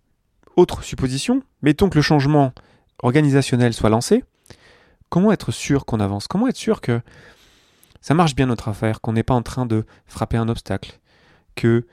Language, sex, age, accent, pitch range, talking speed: French, male, 30-49, French, 100-130 Hz, 165 wpm